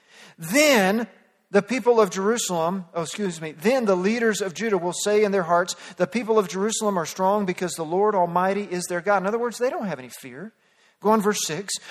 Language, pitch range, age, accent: English, 185-230 Hz, 40-59, American